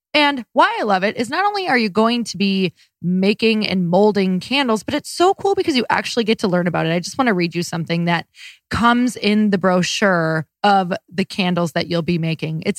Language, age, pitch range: English, 20-39, 175-245 Hz